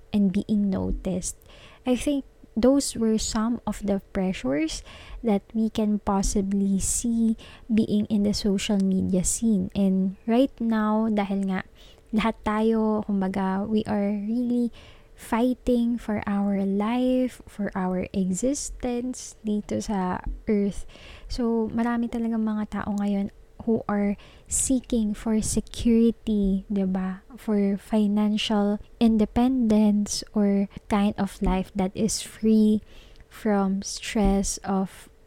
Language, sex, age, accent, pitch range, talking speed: Filipino, female, 20-39, native, 195-225 Hz, 115 wpm